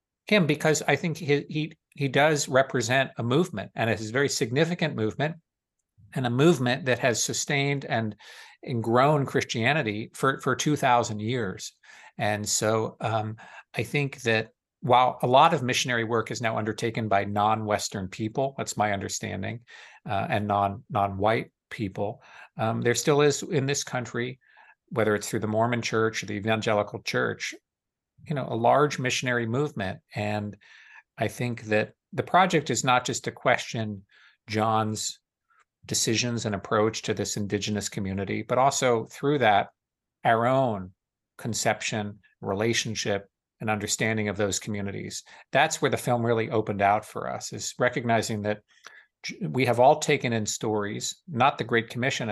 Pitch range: 105-135 Hz